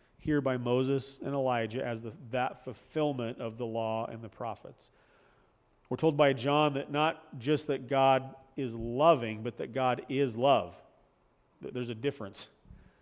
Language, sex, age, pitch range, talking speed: English, male, 40-59, 120-150 Hz, 150 wpm